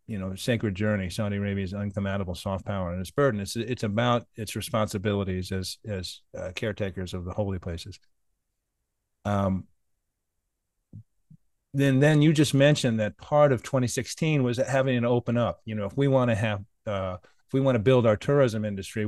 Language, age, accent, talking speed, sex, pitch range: English, 40-59, American, 180 wpm, male, 100-125 Hz